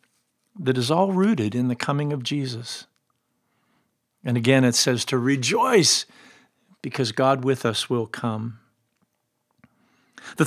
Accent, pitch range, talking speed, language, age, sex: American, 115-150 Hz, 125 wpm, English, 50-69, male